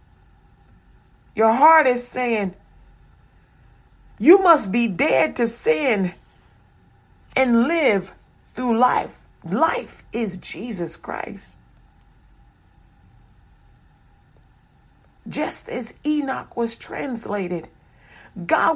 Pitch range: 235-310 Hz